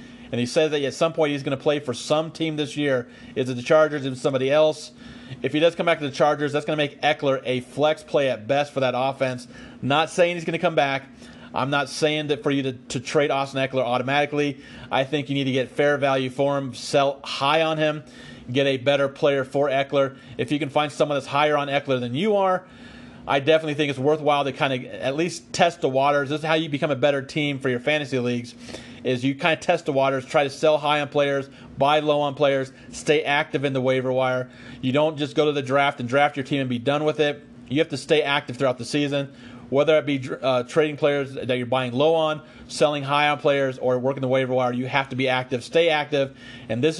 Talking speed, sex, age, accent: 250 wpm, male, 40-59, American